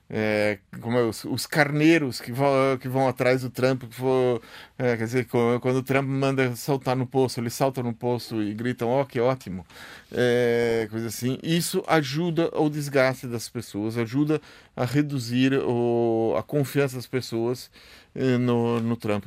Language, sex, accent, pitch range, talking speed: Portuguese, male, Brazilian, 120-150 Hz, 145 wpm